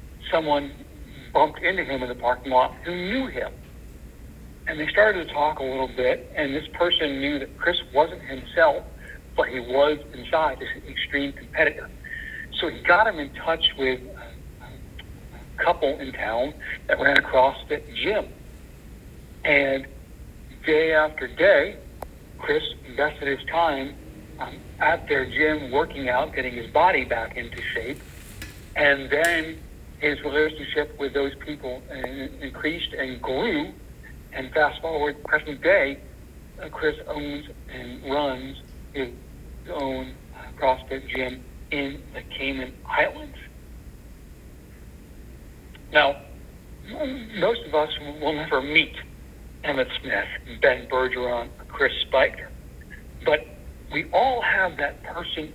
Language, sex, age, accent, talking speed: English, male, 60-79, American, 125 wpm